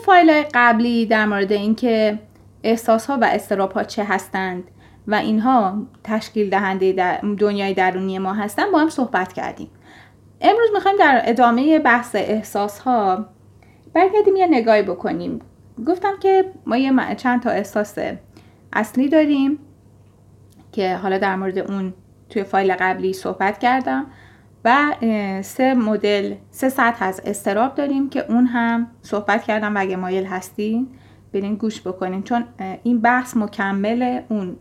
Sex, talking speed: female, 135 wpm